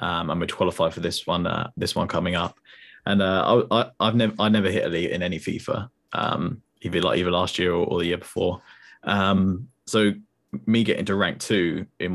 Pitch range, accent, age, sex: 90-105 Hz, British, 20-39, male